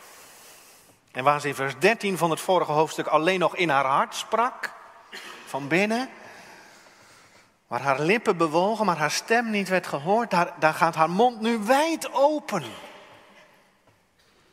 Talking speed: 150 wpm